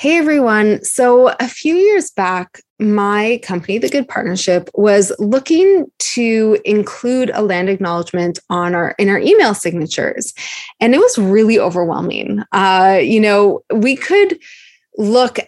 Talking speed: 140 wpm